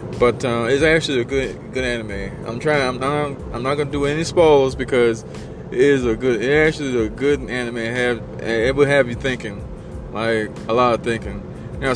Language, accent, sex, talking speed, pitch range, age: English, American, male, 215 wpm, 120-150 Hz, 20-39